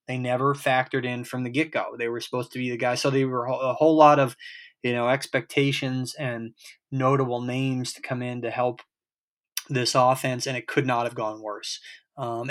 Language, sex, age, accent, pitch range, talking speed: English, male, 20-39, American, 120-145 Hz, 200 wpm